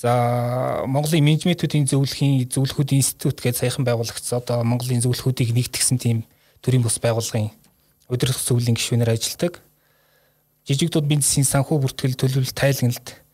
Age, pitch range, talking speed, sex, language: 20-39, 120-145 Hz, 170 wpm, male, Russian